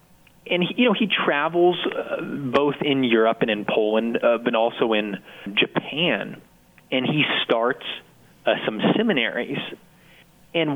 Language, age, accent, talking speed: English, 30-49, American, 110 wpm